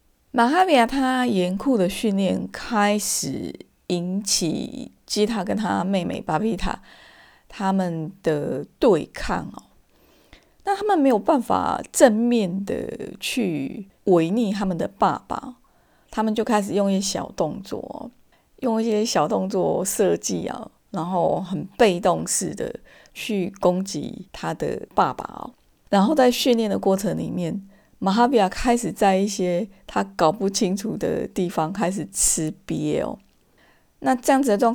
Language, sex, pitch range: Chinese, female, 185-235 Hz